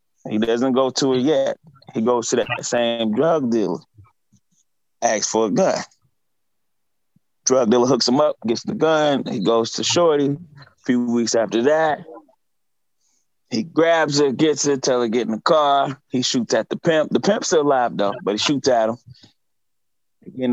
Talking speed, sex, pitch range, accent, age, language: 180 wpm, male, 115-140 Hz, American, 20-39, English